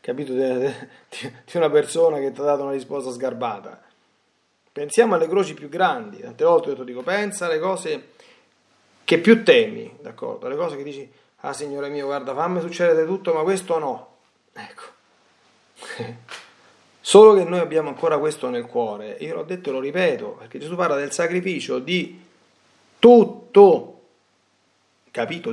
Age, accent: 40-59, native